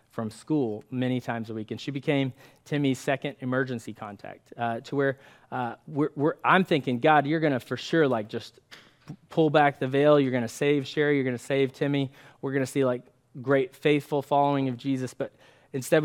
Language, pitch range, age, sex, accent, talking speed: English, 125-145 Hz, 20-39, male, American, 205 wpm